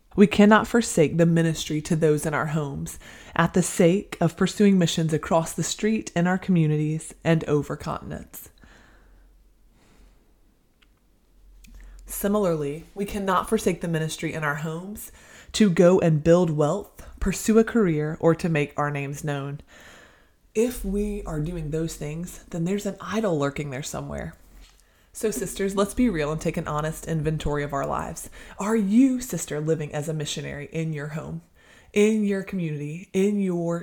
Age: 20-39